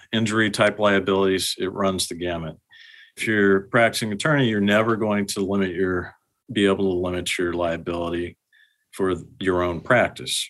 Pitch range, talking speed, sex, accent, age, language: 90-110 Hz, 160 wpm, male, American, 50-69, English